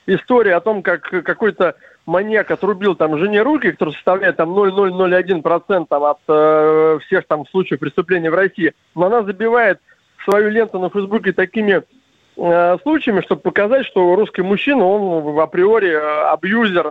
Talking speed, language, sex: 140 wpm, Russian, male